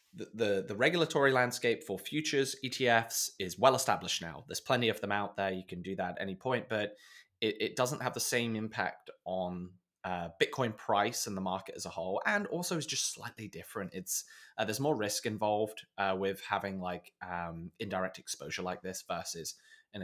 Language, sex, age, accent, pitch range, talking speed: English, male, 20-39, British, 95-155 Hz, 195 wpm